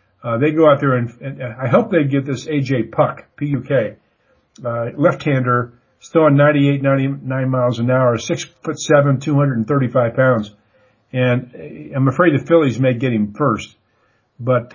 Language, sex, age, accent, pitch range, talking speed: English, male, 50-69, American, 125-150 Hz, 160 wpm